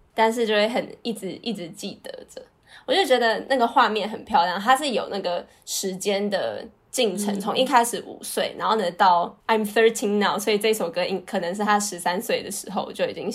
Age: 10-29